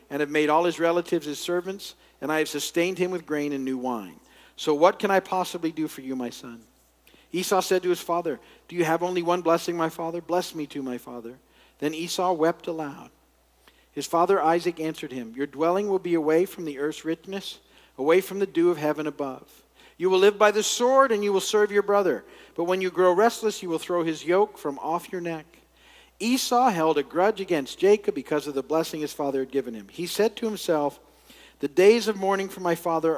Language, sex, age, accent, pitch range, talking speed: English, male, 50-69, American, 145-185 Hz, 220 wpm